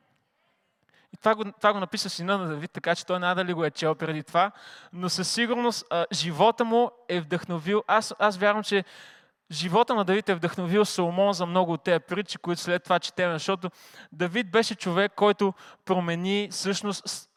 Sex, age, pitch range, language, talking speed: male, 20-39, 180-215 Hz, Bulgarian, 175 wpm